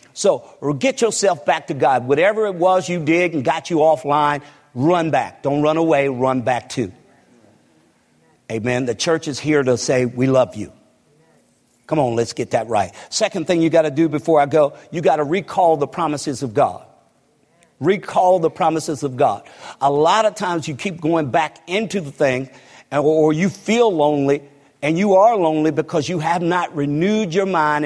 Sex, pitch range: male, 135-165 Hz